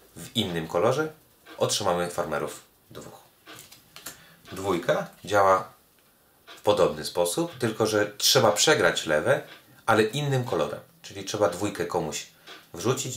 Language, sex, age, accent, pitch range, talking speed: Polish, male, 30-49, native, 85-130 Hz, 110 wpm